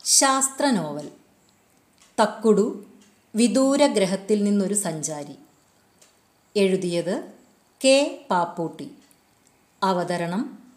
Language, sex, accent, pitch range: Malayalam, female, native, 180-255 Hz